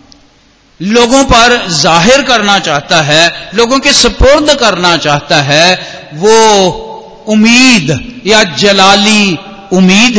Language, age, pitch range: Hindi, 50-69, 150-235 Hz